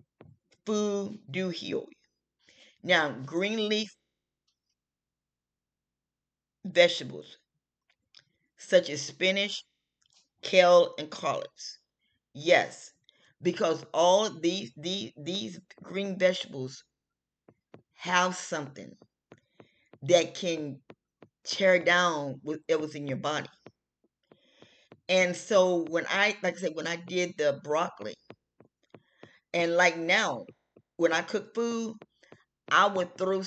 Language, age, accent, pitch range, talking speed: English, 40-59, American, 150-195 Hz, 100 wpm